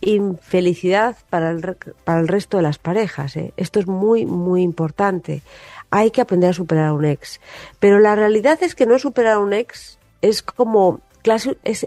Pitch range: 170-235 Hz